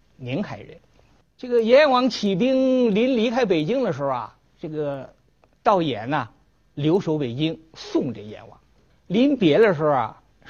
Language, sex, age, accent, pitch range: Chinese, male, 50-69, native, 120-180 Hz